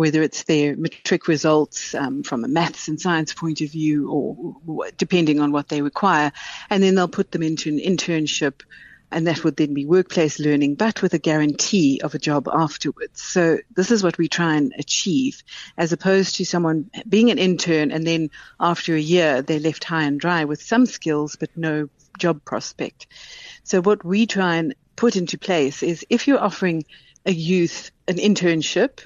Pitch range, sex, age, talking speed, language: 155-190 Hz, female, 60-79, 190 wpm, English